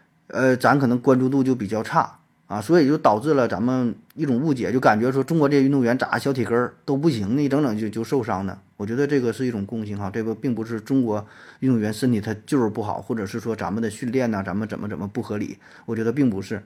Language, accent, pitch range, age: Chinese, native, 110-140 Hz, 20-39